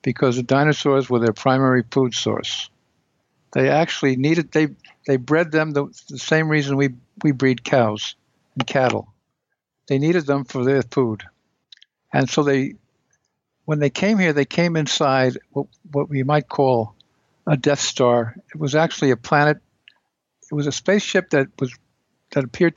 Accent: American